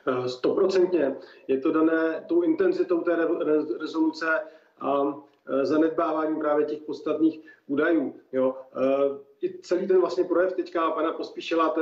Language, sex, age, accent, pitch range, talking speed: Czech, male, 40-59, native, 160-195 Hz, 120 wpm